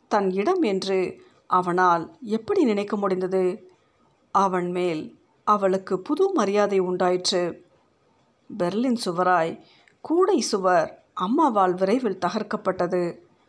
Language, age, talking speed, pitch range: Tamil, 50-69, 90 wpm, 180-245 Hz